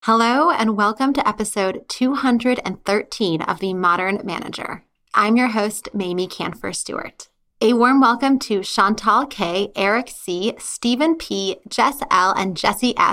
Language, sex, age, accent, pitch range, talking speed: English, female, 20-39, American, 200-245 Hz, 135 wpm